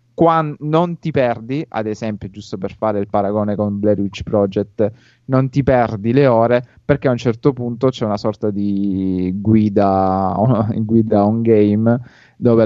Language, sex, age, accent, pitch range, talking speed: Italian, male, 30-49, native, 100-120 Hz, 155 wpm